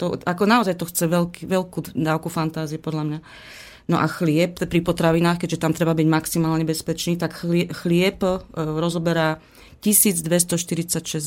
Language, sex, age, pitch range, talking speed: Slovak, female, 30-49, 155-170 Hz, 140 wpm